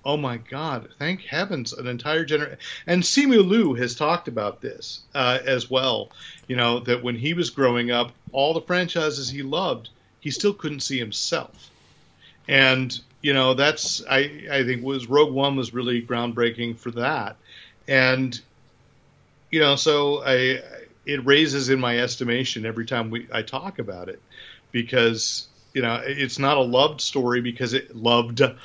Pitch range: 115-135 Hz